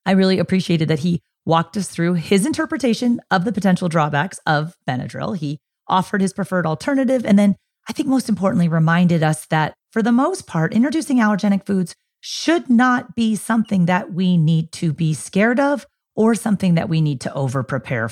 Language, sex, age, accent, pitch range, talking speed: English, female, 30-49, American, 160-205 Hz, 180 wpm